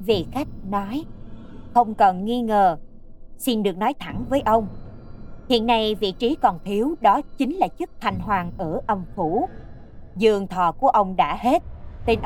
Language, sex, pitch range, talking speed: Vietnamese, female, 175-225 Hz, 170 wpm